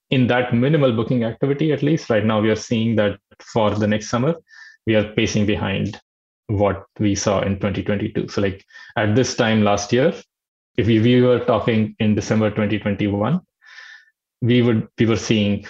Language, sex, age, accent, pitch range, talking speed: English, male, 20-39, Indian, 105-125 Hz, 170 wpm